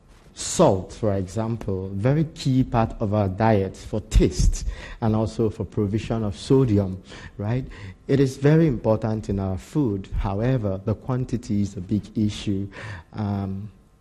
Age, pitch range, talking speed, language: 50-69, 100-115 Hz, 140 wpm, English